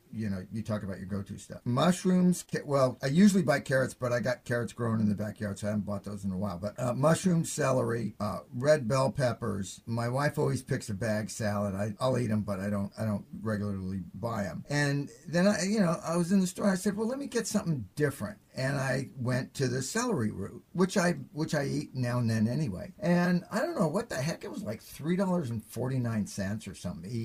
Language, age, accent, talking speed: English, 50-69, American, 240 wpm